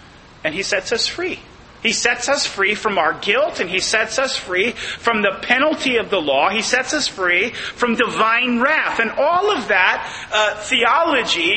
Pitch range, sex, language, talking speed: 215-285 Hz, male, English, 185 wpm